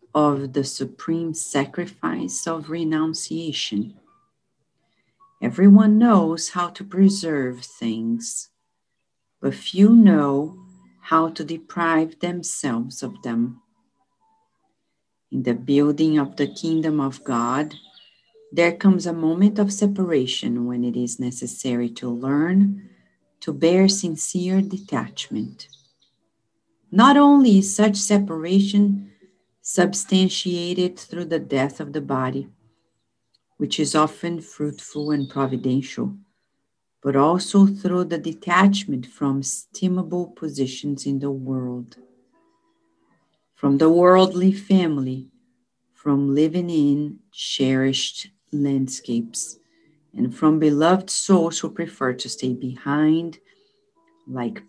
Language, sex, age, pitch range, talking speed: English, female, 50-69, 135-190 Hz, 100 wpm